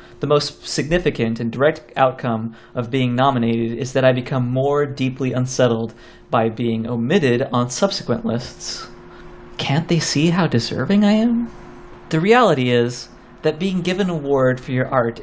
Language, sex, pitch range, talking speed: English, male, 120-160 Hz, 160 wpm